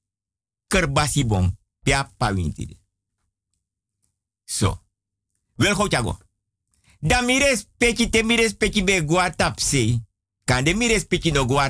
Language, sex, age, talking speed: Dutch, male, 50-69, 125 wpm